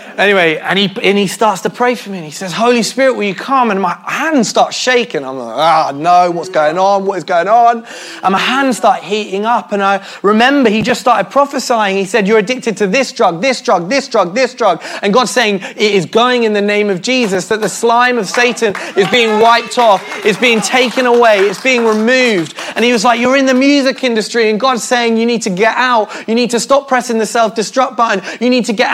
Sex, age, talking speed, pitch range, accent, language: male, 20-39, 240 wpm, 215-265 Hz, British, English